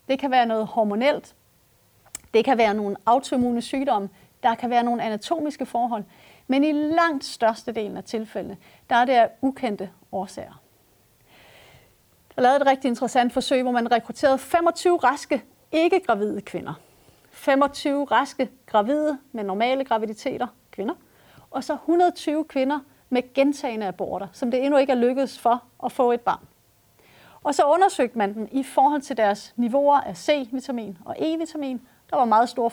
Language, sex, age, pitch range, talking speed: Danish, female, 30-49, 225-285 Hz, 160 wpm